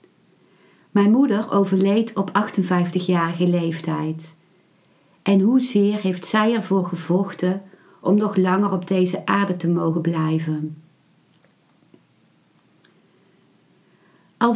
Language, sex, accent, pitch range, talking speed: Dutch, female, Dutch, 180-215 Hz, 90 wpm